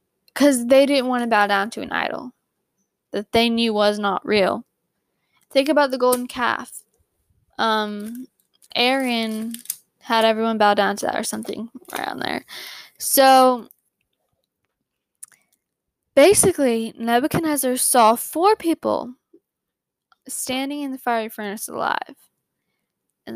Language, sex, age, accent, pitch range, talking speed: English, female, 10-29, American, 225-275 Hz, 120 wpm